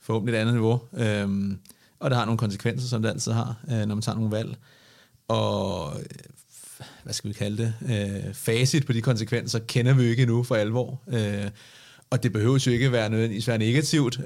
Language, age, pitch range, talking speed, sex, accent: Danish, 30-49, 115-135 Hz, 195 wpm, male, native